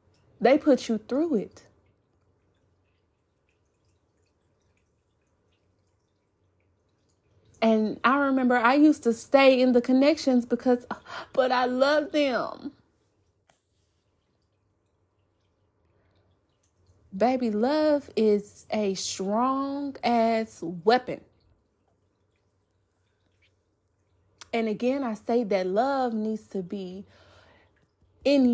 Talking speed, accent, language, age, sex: 80 wpm, American, English, 30-49, female